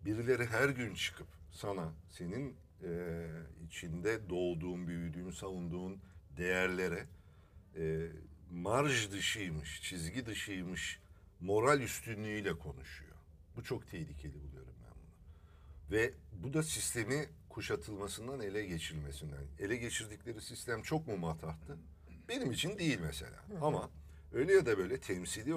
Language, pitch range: Turkish, 80-100 Hz